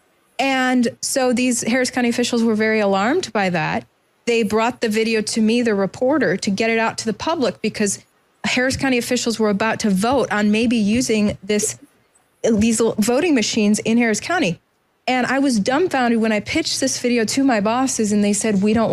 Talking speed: 195 wpm